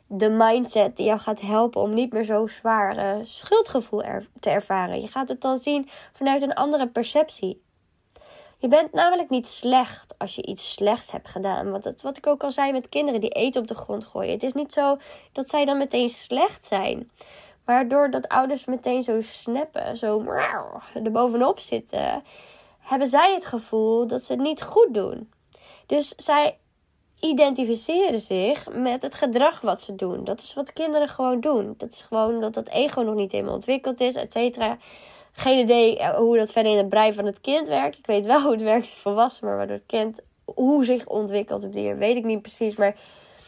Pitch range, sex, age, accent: 215-280 Hz, female, 20-39, Dutch